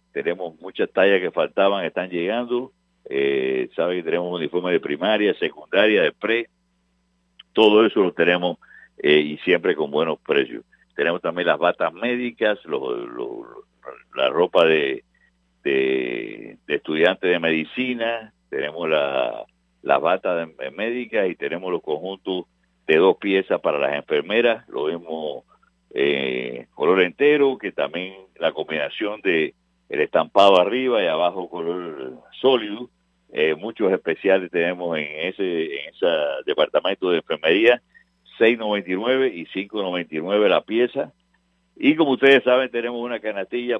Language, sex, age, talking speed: English, male, 60-79, 135 wpm